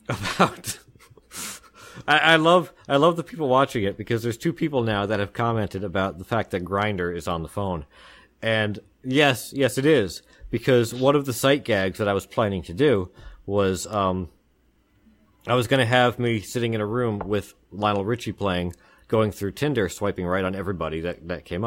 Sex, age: male, 40-59